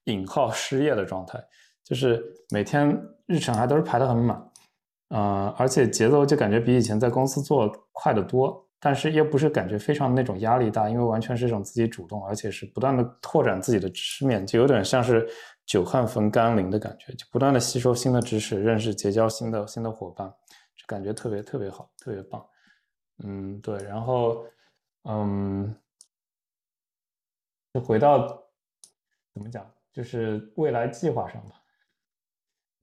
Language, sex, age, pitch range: Chinese, male, 20-39, 105-130 Hz